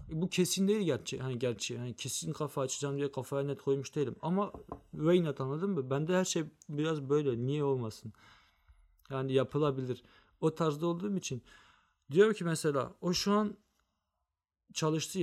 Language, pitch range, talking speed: Turkish, 130-180 Hz, 150 wpm